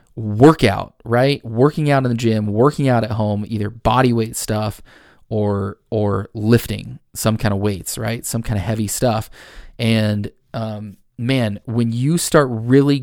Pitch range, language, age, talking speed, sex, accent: 110-130 Hz, English, 20-39, 160 wpm, male, American